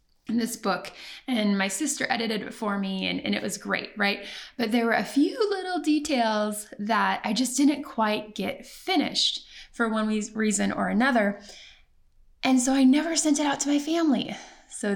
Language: English